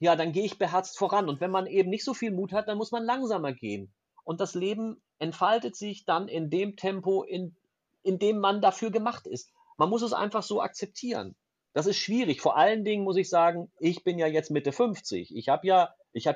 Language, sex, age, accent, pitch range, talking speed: German, male, 40-59, German, 150-200 Hz, 220 wpm